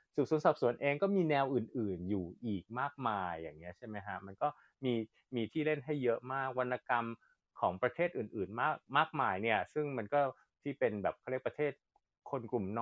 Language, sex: Thai, male